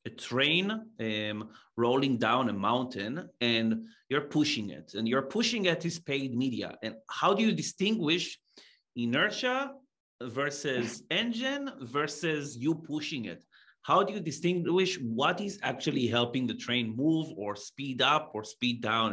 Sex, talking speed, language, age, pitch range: male, 145 wpm, English, 30-49, 115-155 Hz